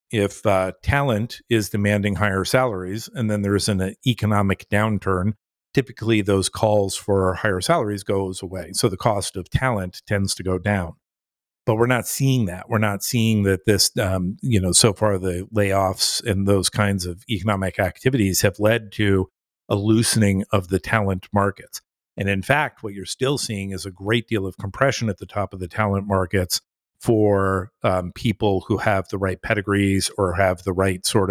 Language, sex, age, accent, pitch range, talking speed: English, male, 50-69, American, 95-115 Hz, 185 wpm